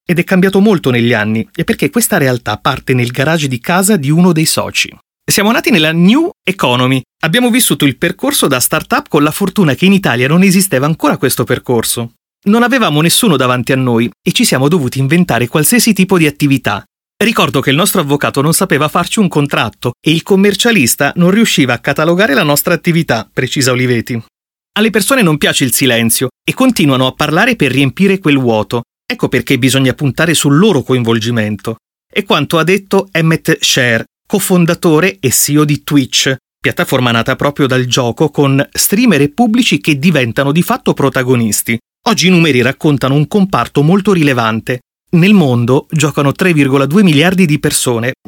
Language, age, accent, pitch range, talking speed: Italian, 30-49, native, 130-185 Hz, 175 wpm